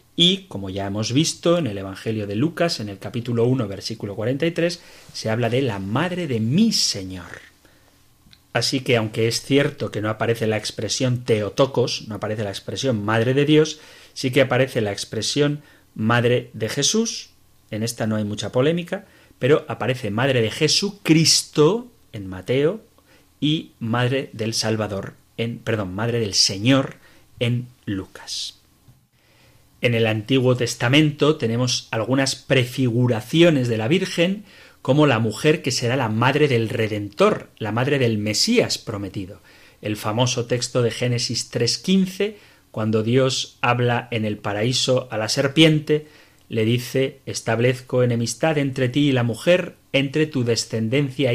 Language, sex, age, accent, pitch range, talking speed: Spanish, male, 30-49, Spanish, 110-145 Hz, 145 wpm